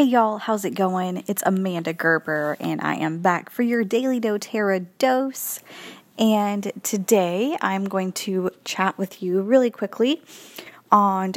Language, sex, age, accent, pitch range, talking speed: English, female, 20-39, American, 180-230 Hz, 150 wpm